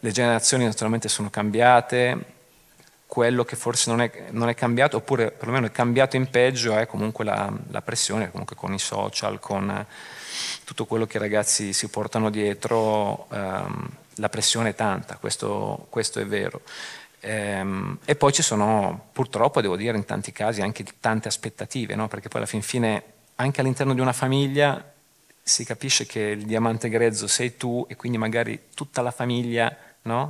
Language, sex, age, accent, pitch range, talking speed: Italian, male, 30-49, native, 110-125 Hz, 170 wpm